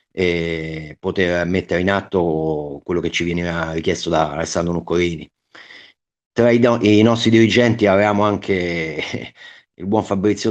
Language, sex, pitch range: Italian, male, 85-105 Hz